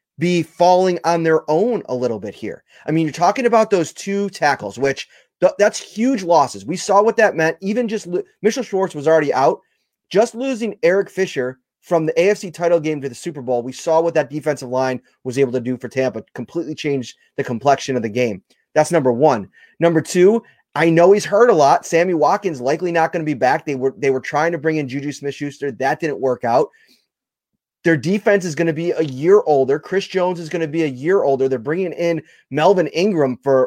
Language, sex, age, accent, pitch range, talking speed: English, male, 30-49, American, 135-180 Hz, 215 wpm